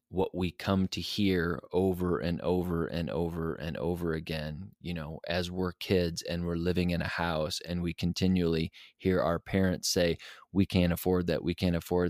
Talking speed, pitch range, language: 190 wpm, 85-100 Hz, English